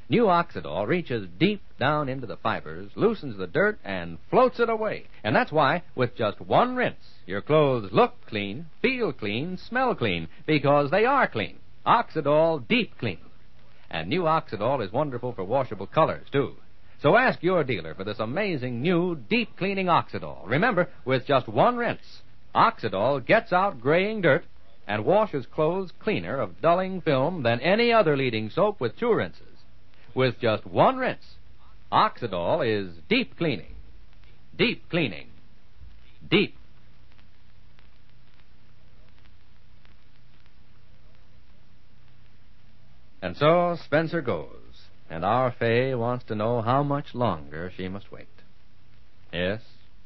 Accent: American